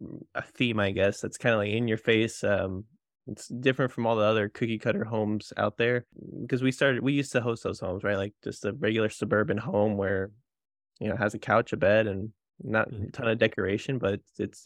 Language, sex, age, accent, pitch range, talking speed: English, male, 20-39, American, 105-125 Hz, 230 wpm